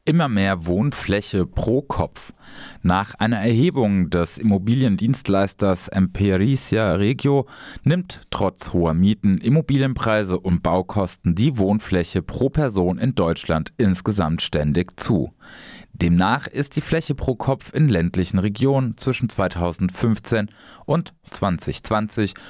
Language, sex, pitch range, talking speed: German, male, 95-135 Hz, 110 wpm